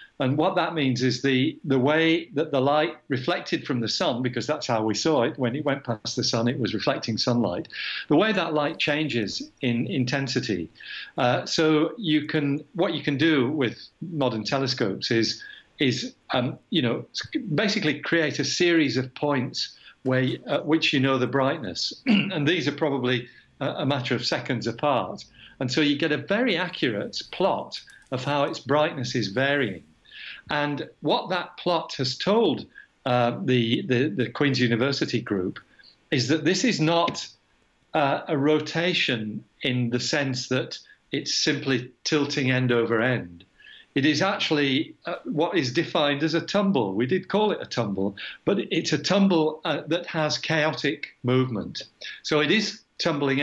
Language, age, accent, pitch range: English, 50-69, British, 125-160 Hz